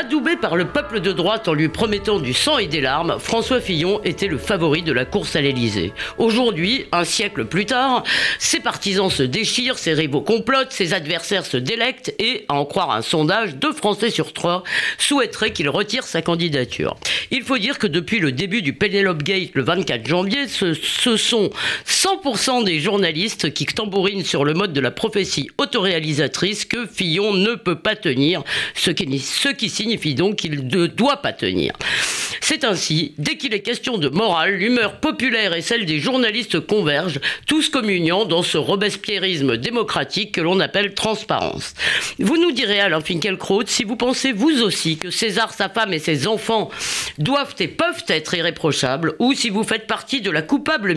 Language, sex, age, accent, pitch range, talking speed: French, female, 50-69, French, 170-235 Hz, 180 wpm